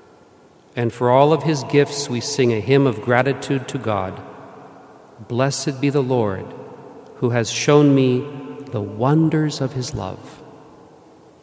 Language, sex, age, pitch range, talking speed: English, male, 50-69, 120-145 Hz, 140 wpm